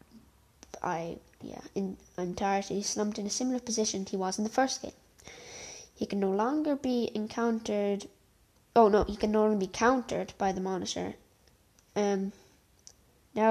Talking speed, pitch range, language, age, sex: 150 wpm, 200-225 Hz, English, 10-29, female